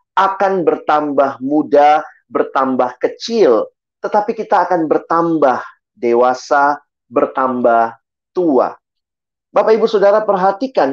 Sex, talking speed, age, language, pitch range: male, 90 wpm, 40-59, Indonesian, 145-210 Hz